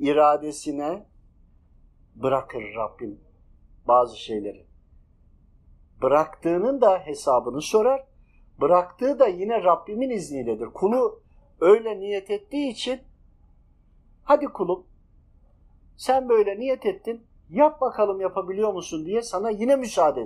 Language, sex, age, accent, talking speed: Turkish, male, 50-69, native, 100 wpm